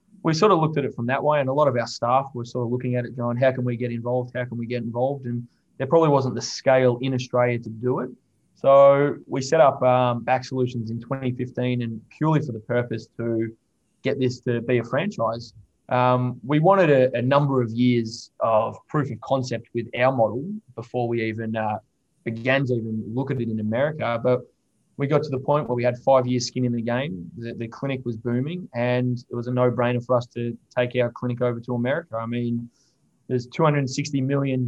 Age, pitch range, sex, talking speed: 20-39, 115-130 Hz, male, 225 wpm